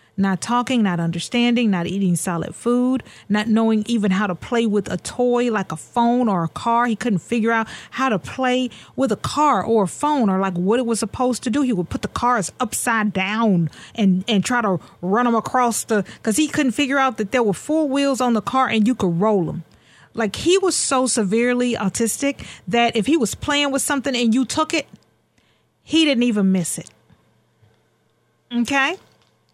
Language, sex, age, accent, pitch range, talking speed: English, female, 40-59, American, 195-250 Hz, 205 wpm